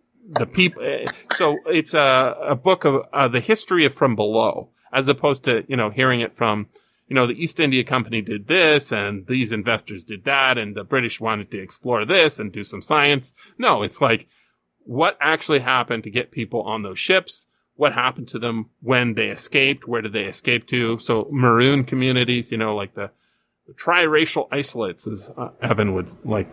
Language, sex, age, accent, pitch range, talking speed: English, male, 30-49, American, 110-140 Hz, 190 wpm